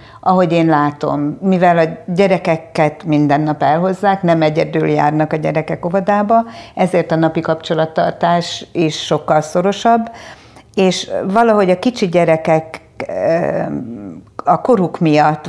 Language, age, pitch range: Hungarian, 50-69, 155-180 Hz